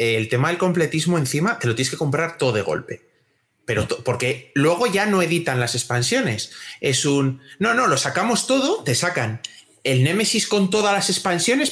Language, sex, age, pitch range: Spanish, male, 30-49, 120-170 Hz